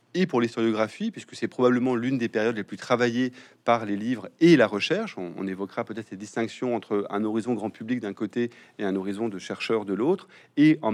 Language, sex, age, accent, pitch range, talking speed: French, male, 30-49, French, 105-130 Hz, 220 wpm